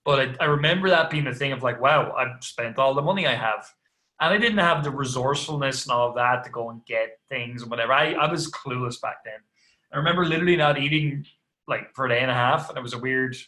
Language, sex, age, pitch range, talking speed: English, male, 20-39, 130-165 Hz, 260 wpm